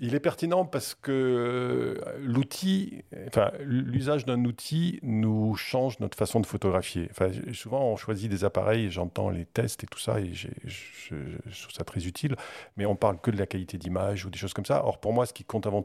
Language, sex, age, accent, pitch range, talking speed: French, male, 50-69, French, 95-115 Hz, 220 wpm